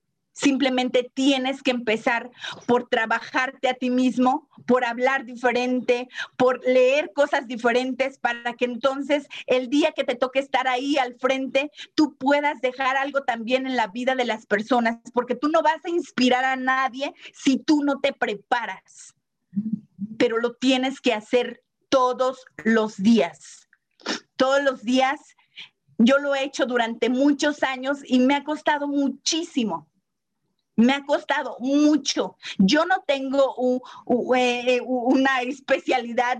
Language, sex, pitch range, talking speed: Spanish, female, 240-280 Hz, 145 wpm